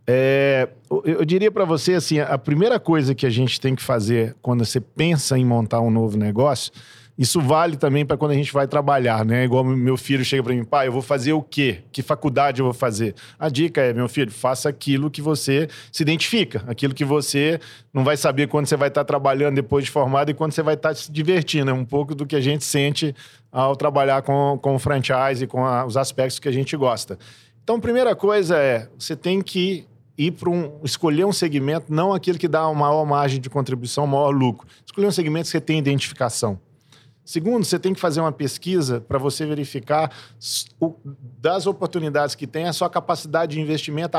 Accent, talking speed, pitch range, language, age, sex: Brazilian, 210 wpm, 130-160 Hz, Portuguese, 40-59, male